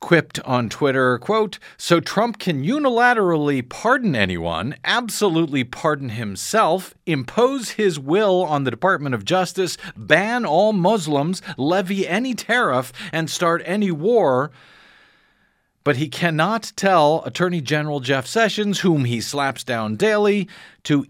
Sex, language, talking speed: male, English, 130 wpm